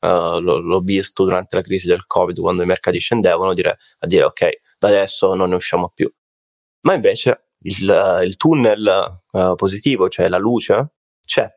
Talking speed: 155 wpm